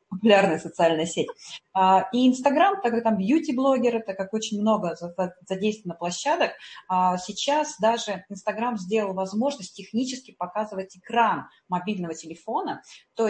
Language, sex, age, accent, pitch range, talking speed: Russian, female, 30-49, native, 180-240 Hz, 115 wpm